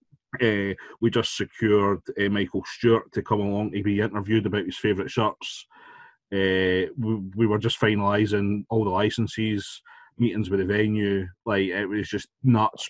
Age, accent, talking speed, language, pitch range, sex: 30-49, British, 165 wpm, English, 100-110 Hz, male